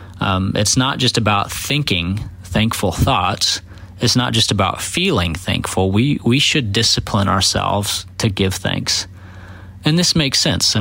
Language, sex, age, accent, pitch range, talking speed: English, male, 30-49, American, 95-115 Hz, 150 wpm